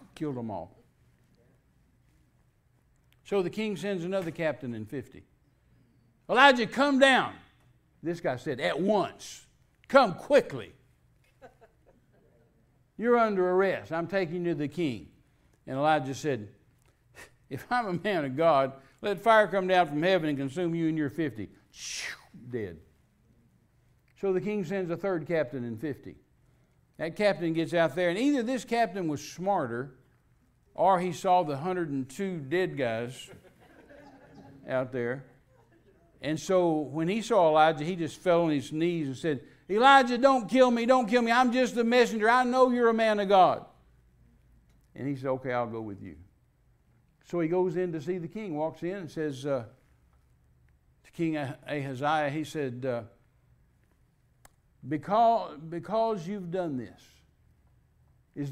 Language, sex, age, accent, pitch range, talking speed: English, male, 60-79, American, 130-195 Hz, 150 wpm